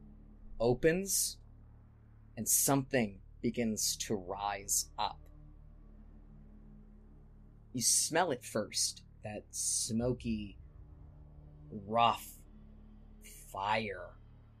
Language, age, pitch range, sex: English, 20-39, 75-110 Hz, male